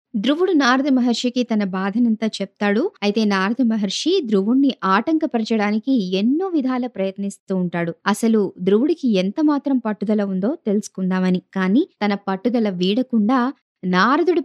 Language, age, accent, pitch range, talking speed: Telugu, 20-39, native, 195-265 Hz, 110 wpm